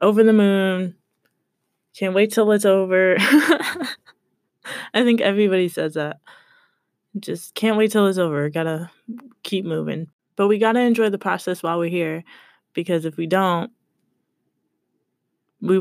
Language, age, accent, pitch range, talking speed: English, 20-39, American, 175-220 Hz, 145 wpm